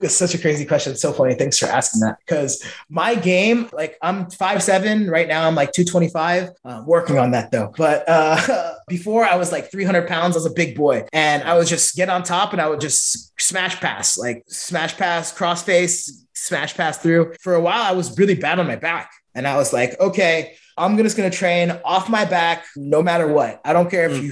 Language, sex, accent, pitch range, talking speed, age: English, male, American, 155-190 Hz, 230 wpm, 20-39